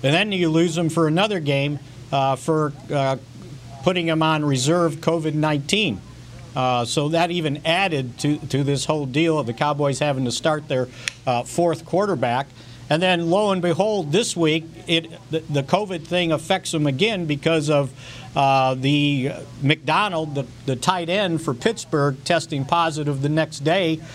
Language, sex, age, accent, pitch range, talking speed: English, male, 50-69, American, 135-165 Hz, 165 wpm